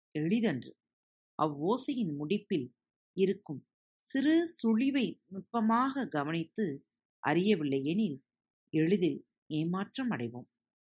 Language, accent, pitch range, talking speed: Tamil, native, 150-230 Hz, 65 wpm